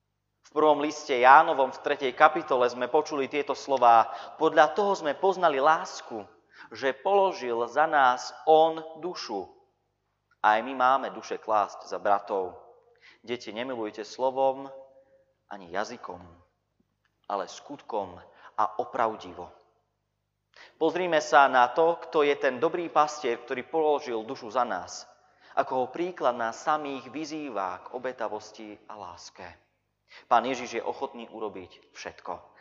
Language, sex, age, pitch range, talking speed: Slovak, male, 30-49, 105-150 Hz, 125 wpm